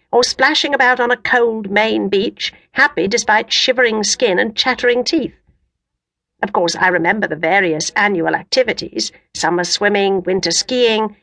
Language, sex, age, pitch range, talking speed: English, female, 50-69, 175-245 Hz, 145 wpm